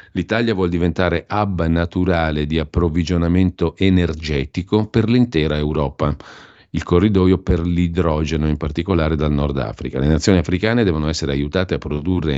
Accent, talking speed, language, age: native, 135 wpm, Italian, 50-69